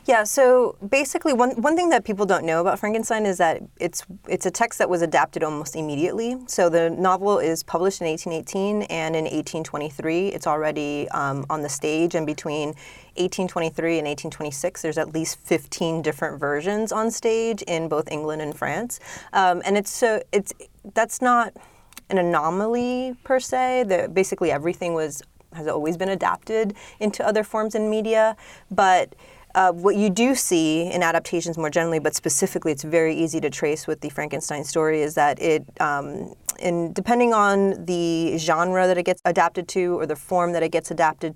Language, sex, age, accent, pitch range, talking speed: English, female, 30-49, American, 155-195 Hz, 185 wpm